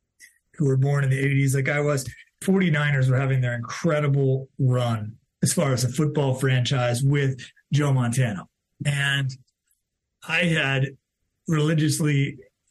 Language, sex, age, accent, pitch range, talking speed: English, male, 30-49, American, 125-145 Hz, 130 wpm